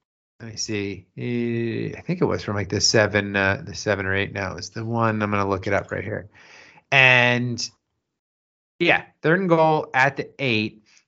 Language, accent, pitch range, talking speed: English, American, 110-145 Hz, 190 wpm